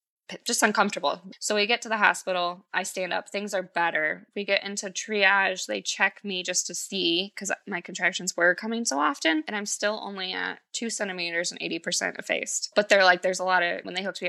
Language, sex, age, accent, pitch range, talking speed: English, female, 20-39, American, 180-220 Hz, 220 wpm